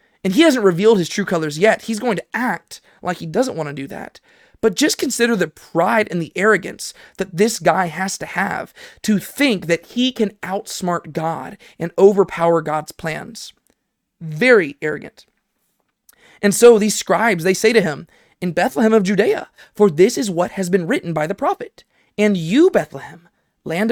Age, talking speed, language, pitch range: 20-39, 180 wpm, English, 170-220 Hz